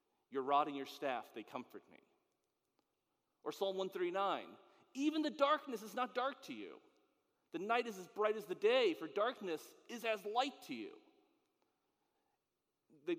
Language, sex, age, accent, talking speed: English, male, 40-59, American, 155 wpm